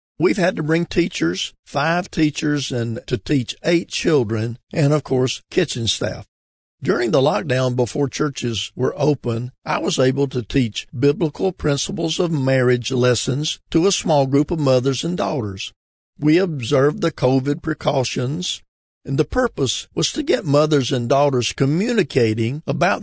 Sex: male